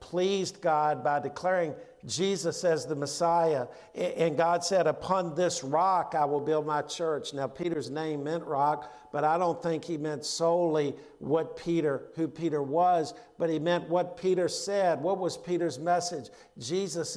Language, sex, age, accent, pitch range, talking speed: English, male, 50-69, American, 145-175 Hz, 165 wpm